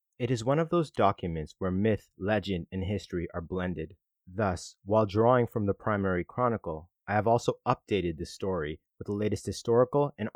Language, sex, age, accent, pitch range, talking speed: English, male, 30-49, American, 90-110 Hz, 180 wpm